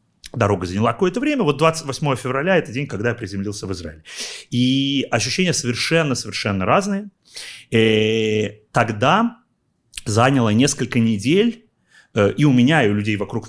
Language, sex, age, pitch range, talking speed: Russian, male, 30-49, 95-125 Hz, 130 wpm